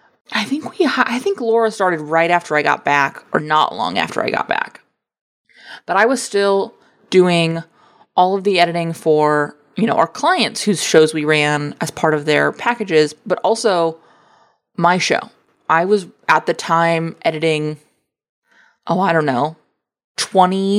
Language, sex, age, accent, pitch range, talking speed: English, female, 20-39, American, 160-220 Hz, 165 wpm